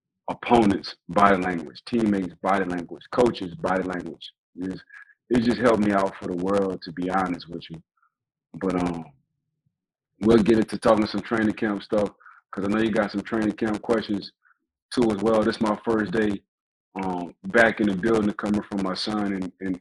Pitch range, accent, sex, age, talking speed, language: 100-115 Hz, American, male, 30-49, 180 wpm, English